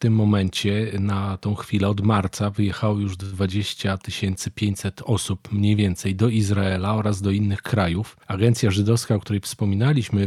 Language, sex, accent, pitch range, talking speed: Polish, male, native, 100-120 Hz, 150 wpm